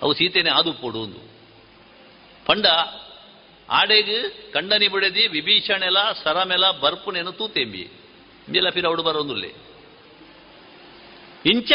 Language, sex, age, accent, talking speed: Kannada, male, 60-79, native, 85 wpm